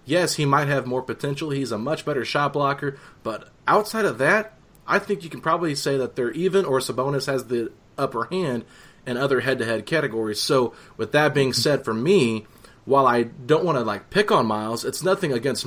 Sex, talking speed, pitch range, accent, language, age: male, 205 wpm, 115-145 Hz, American, English, 30-49